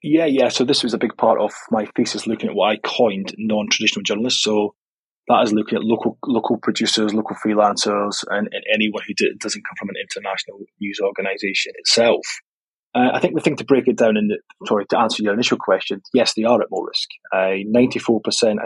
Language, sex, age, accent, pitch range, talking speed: English, male, 20-39, British, 105-120 Hz, 205 wpm